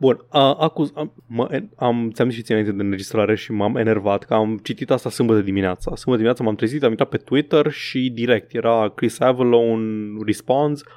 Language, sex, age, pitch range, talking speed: Romanian, male, 20-39, 110-135 Hz, 170 wpm